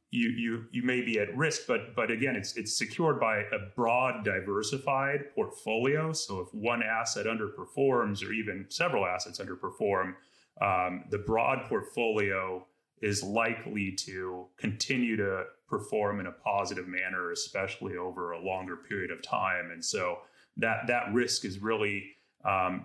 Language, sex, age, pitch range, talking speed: English, male, 30-49, 100-120 Hz, 150 wpm